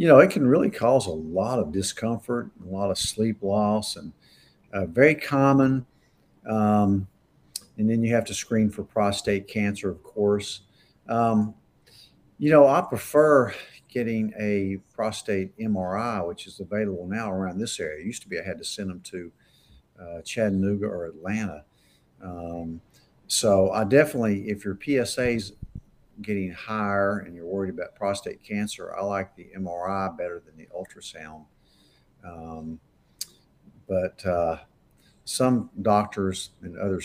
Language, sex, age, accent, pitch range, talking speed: English, male, 50-69, American, 90-110 Hz, 145 wpm